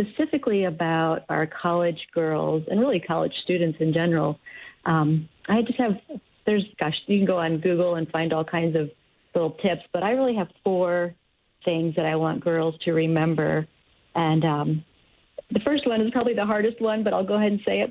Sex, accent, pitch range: female, American, 165-205 Hz